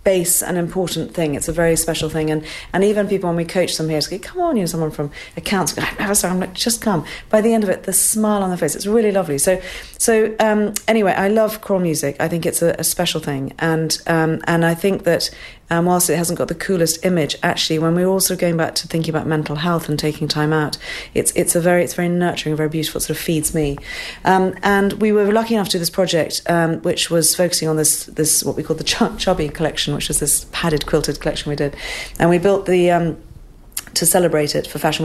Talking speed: 255 wpm